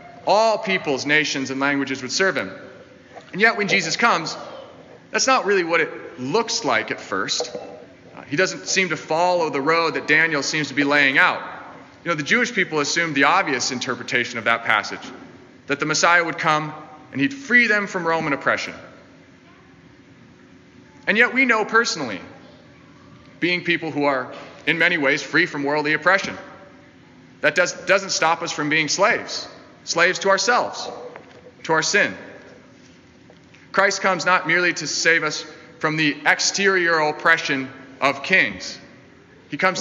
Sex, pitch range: male, 150-190 Hz